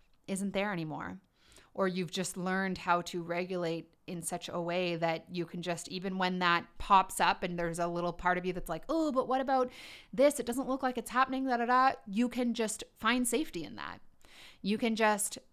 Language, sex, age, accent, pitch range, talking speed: English, female, 30-49, American, 175-215 Hz, 205 wpm